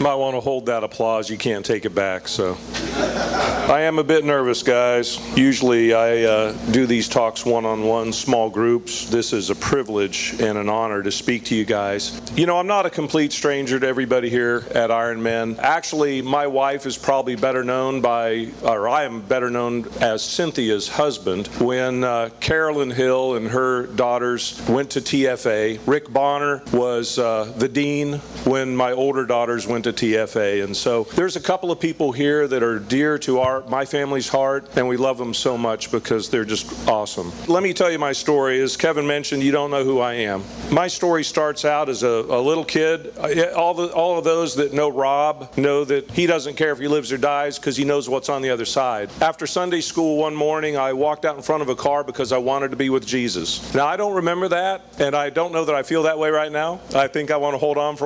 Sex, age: male, 40-59